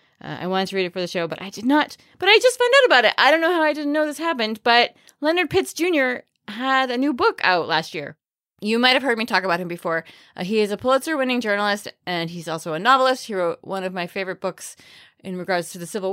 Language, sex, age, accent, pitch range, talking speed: English, female, 20-39, American, 175-250 Hz, 270 wpm